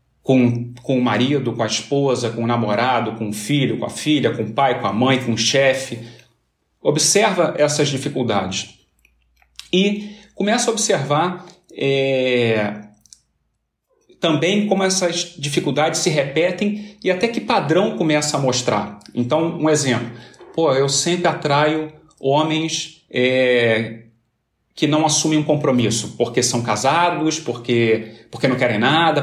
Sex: male